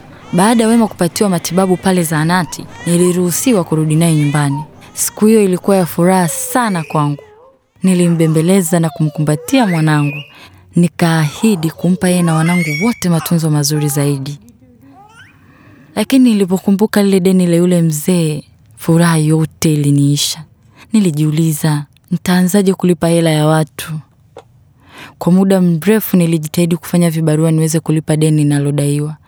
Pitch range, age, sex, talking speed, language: 150-185 Hz, 20-39, female, 120 wpm, Swahili